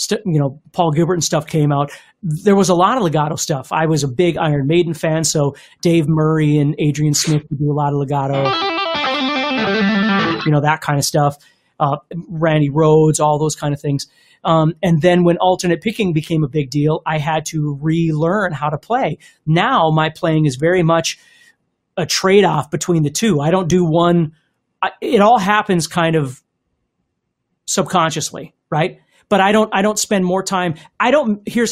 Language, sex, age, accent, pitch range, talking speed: English, male, 30-49, American, 150-185 Hz, 190 wpm